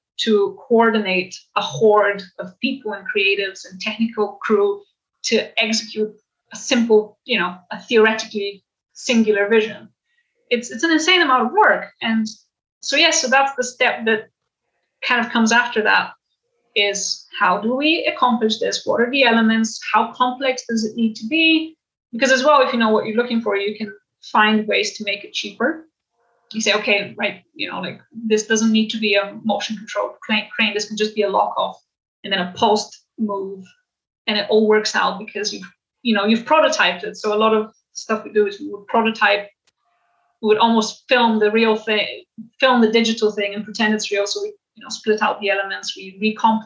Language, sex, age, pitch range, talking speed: English, female, 30-49, 210-235 Hz, 195 wpm